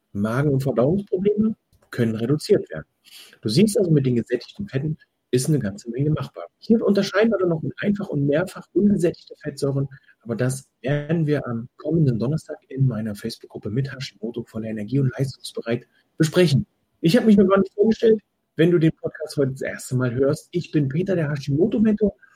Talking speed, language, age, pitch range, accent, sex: 175 wpm, German, 40-59, 130-180 Hz, German, male